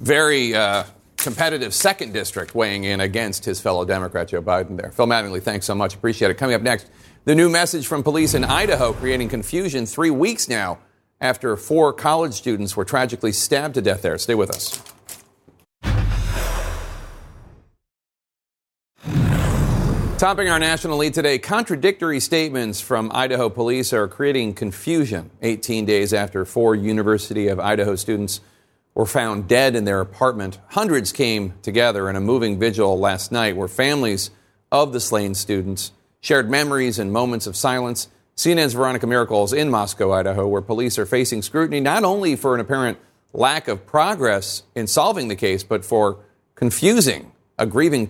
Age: 40-59